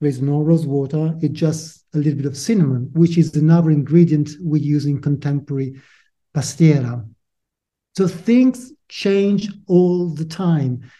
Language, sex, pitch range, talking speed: English, male, 155-190 Hz, 145 wpm